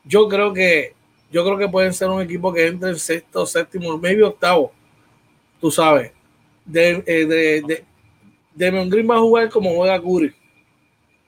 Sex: male